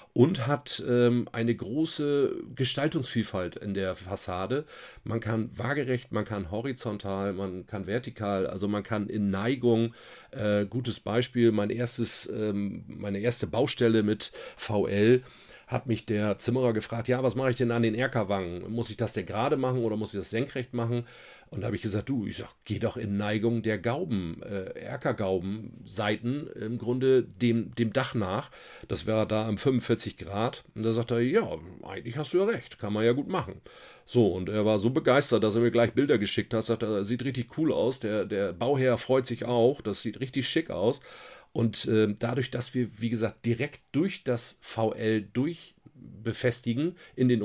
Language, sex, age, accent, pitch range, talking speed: German, male, 40-59, German, 105-125 Hz, 190 wpm